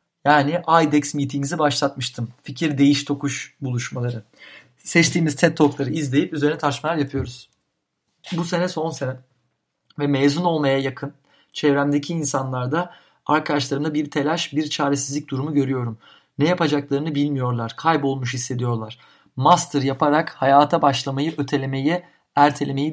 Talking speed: 115 wpm